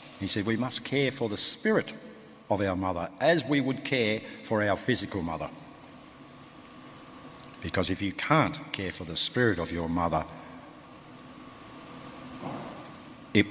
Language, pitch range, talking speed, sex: English, 95-125 Hz, 140 wpm, male